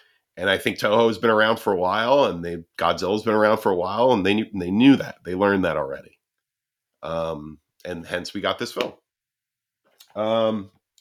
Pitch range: 100-140 Hz